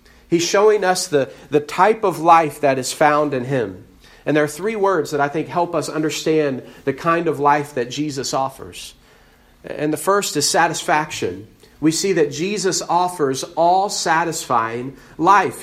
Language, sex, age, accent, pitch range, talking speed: English, male, 40-59, American, 140-180 Hz, 170 wpm